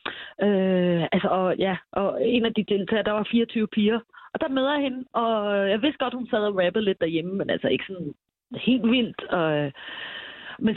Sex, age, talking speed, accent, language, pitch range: female, 30-49, 180 wpm, native, Danish, 185-250 Hz